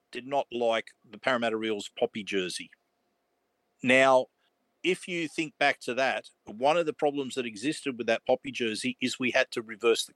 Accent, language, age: Australian, English, 50-69